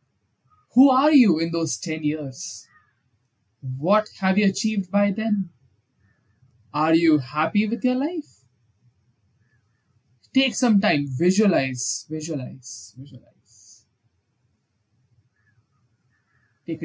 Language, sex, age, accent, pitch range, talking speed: English, male, 20-39, Indian, 130-205 Hz, 95 wpm